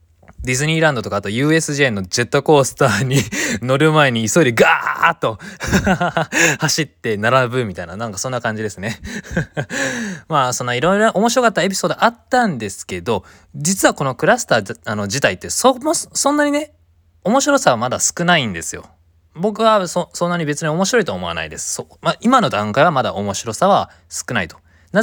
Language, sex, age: Japanese, male, 20-39